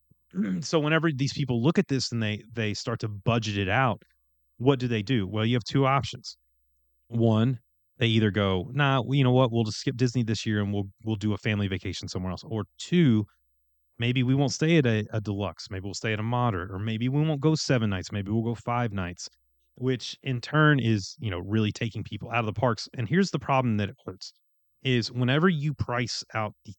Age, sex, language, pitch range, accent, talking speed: 30-49, male, English, 105-130 Hz, American, 225 wpm